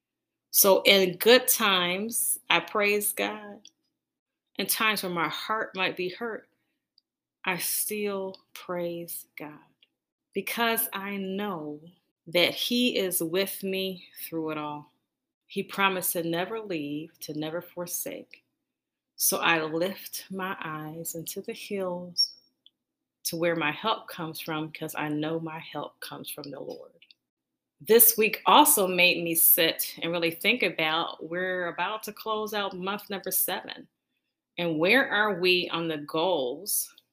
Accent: American